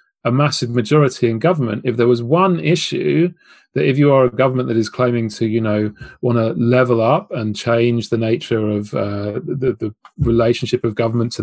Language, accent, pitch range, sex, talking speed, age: Dutch, British, 110-140 Hz, male, 200 wpm, 30-49